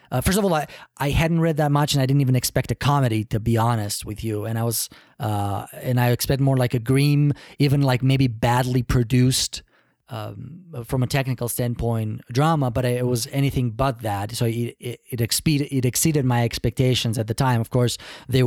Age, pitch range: 30-49, 120-135 Hz